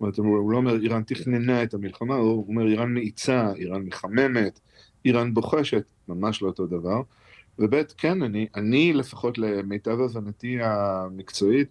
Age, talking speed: 50-69, 150 wpm